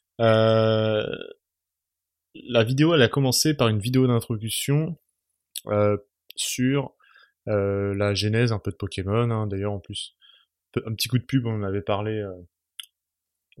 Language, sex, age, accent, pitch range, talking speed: French, male, 20-39, French, 100-130 Hz, 140 wpm